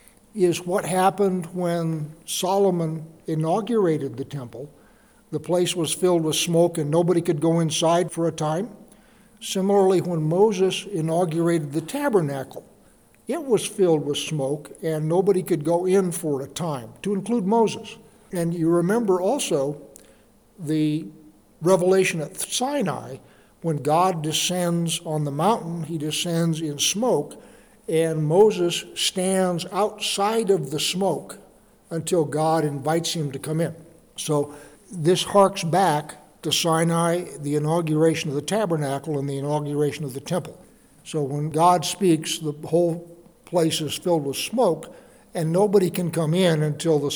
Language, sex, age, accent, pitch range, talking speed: English, male, 60-79, American, 155-185 Hz, 140 wpm